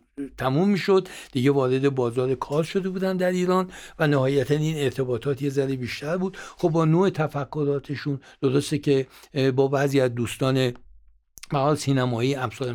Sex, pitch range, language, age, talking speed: male, 115-150 Hz, Persian, 60-79, 150 wpm